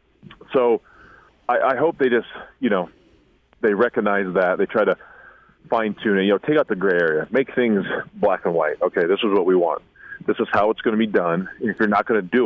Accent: American